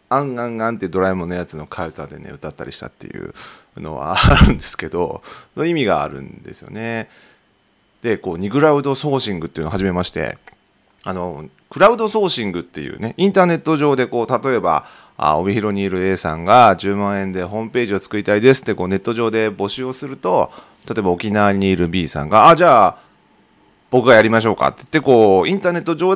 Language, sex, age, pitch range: Japanese, male, 40-59, 95-150 Hz